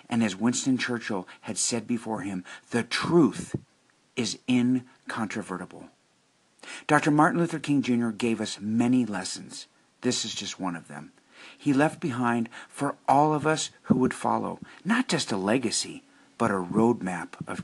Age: 50-69